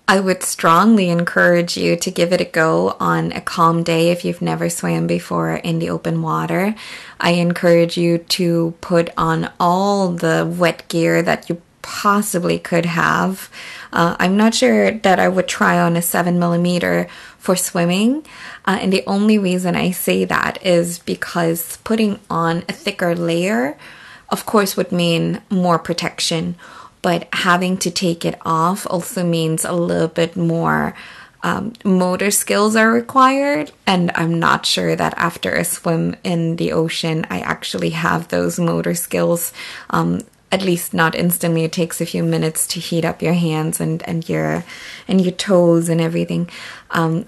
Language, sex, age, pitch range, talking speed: English, female, 20-39, 160-185 Hz, 165 wpm